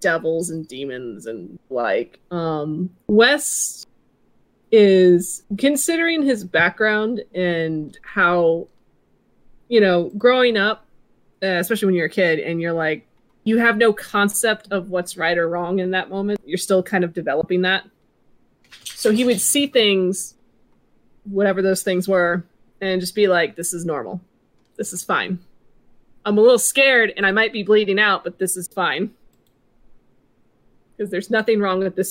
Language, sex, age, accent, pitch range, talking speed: English, female, 20-39, American, 180-230 Hz, 155 wpm